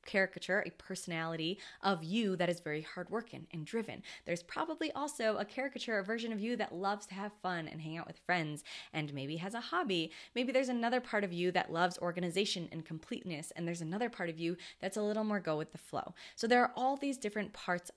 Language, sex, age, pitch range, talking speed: English, female, 20-39, 165-225 Hz, 225 wpm